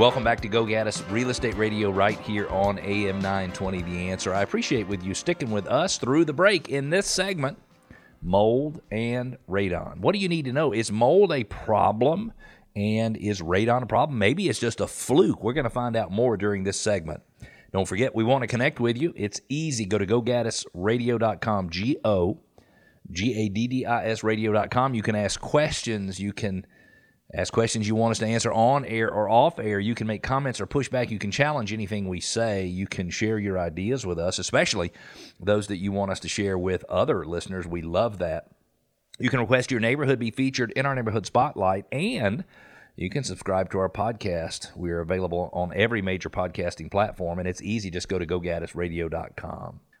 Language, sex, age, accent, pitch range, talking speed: English, male, 40-59, American, 95-120 Hz, 190 wpm